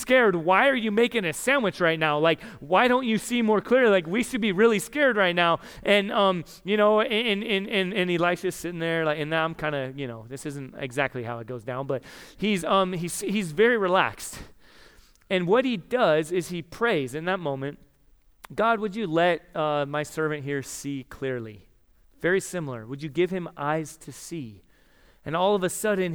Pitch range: 145-200 Hz